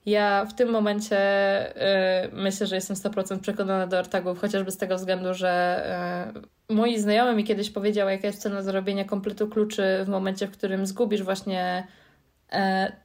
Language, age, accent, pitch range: Polish, 20-39, native, 185-215 Hz